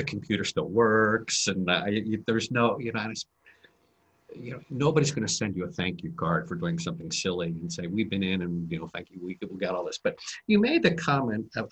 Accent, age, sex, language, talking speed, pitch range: American, 50-69, male, English, 225 wpm, 100-160 Hz